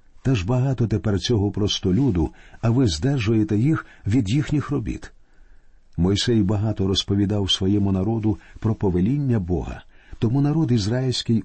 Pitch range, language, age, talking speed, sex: 95-130 Hz, Ukrainian, 50-69, 125 wpm, male